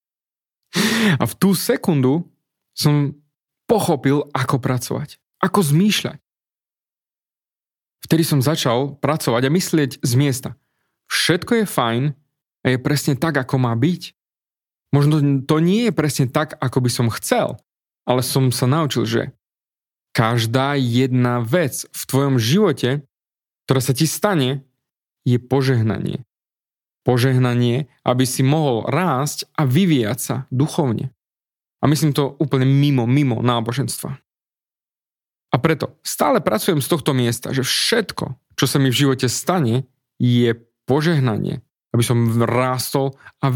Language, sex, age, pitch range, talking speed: Slovak, male, 30-49, 125-155 Hz, 125 wpm